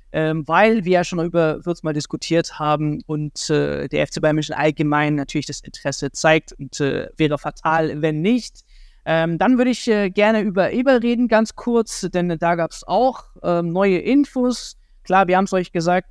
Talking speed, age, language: 185 wpm, 20-39, German